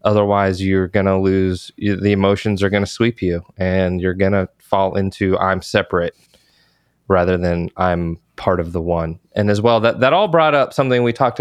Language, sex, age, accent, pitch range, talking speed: English, male, 20-39, American, 100-115 Hz, 205 wpm